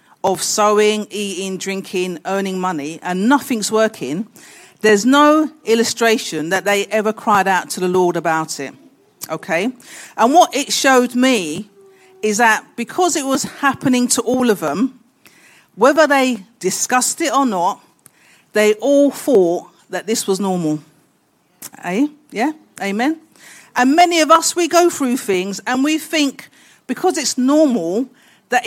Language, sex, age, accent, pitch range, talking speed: English, female, 50-69, British, 195-280 Hz, 145 wpm